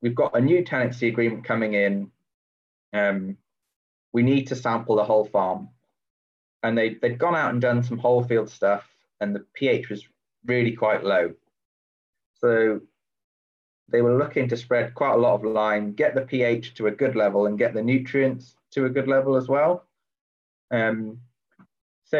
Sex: male